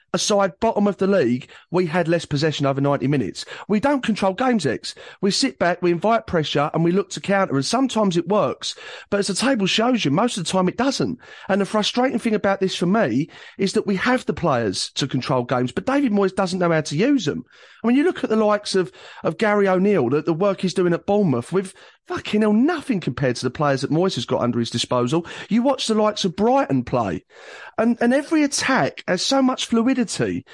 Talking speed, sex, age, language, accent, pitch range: 230 wpm, male, 30-49, English, British, 170-235 Hz